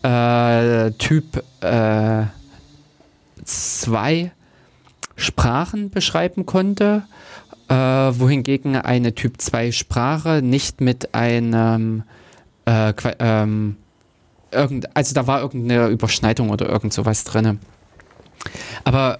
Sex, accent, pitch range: male, German, 110-140 Hz